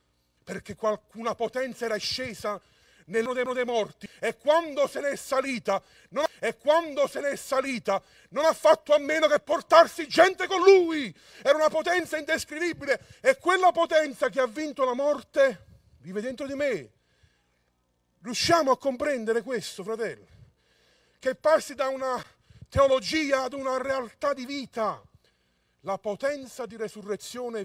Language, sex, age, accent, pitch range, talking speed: Italian, male, 40-59, native, 180-270 Hz, 130 wpm